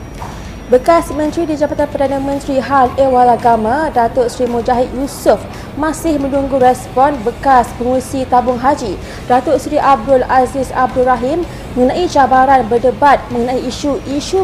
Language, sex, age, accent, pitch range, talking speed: English, female, 20-39, Malaysian, 245-280 Hz, 130 wpm